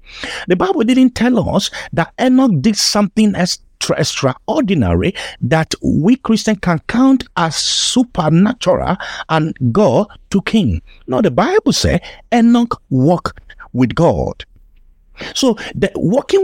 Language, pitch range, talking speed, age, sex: English, 160-225 Hz, 115 wpm, 50-69, male